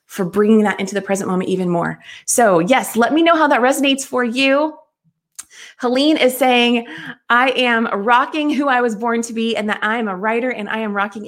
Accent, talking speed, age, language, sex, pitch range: American, 215 wpm, 20-39, English, female, 195-265 Hz